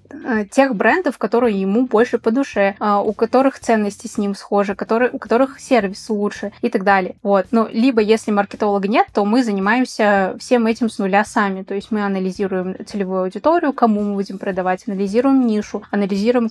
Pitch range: 205-240 Hz